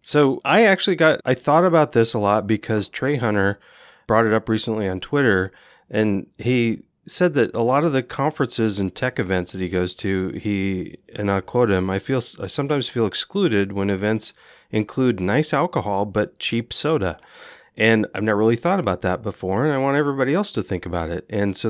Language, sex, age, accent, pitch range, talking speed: English, male, 30-49, American, 100-130 Hz, 200 wpm